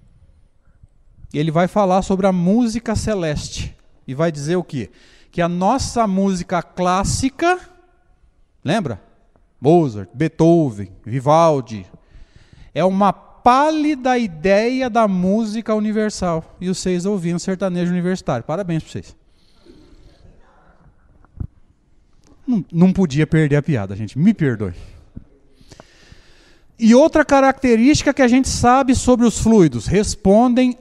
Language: Portuguese